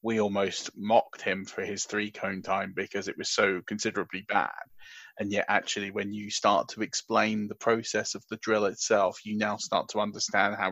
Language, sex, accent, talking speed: English, male, British, 190 wpm